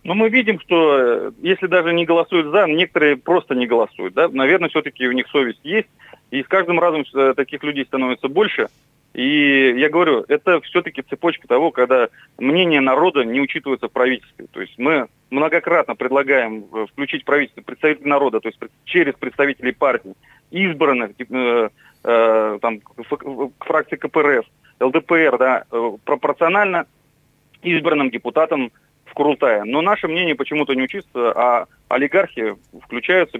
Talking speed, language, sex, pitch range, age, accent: 135 wpm, Russian, male, 125-160 Hz, 30-49, native